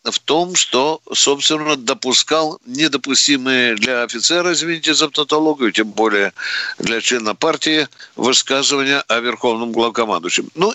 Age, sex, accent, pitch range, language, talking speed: 60-79, male, native, 125-170 Hz, Russian, 110 wpm